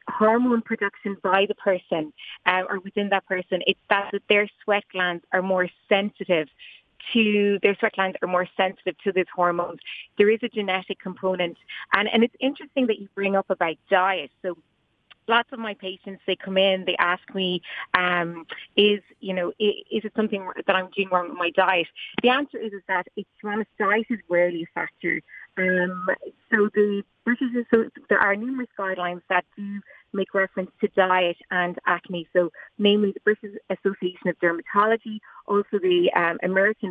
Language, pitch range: English, 185-215 Hz